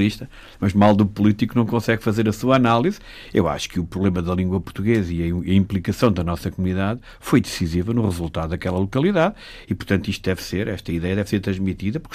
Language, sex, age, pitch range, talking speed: Portuguese, male, 50-69, 90-110 Hz, 205 wpm